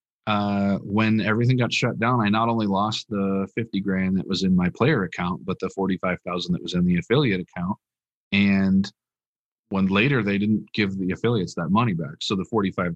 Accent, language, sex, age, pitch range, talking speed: American, English, male, 40-59, 95-130 Hz, 195 wpm